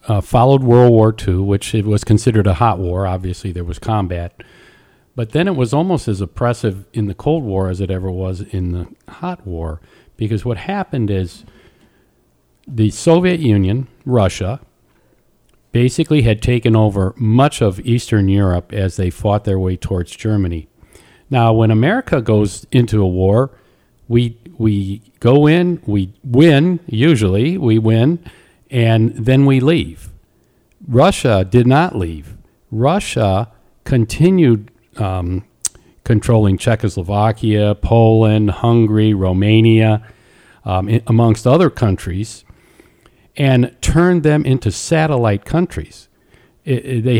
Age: 50-69